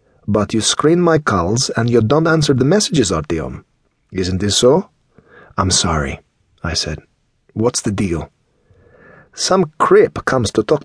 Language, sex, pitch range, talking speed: English, male, 95-135 Hz, 150 wpm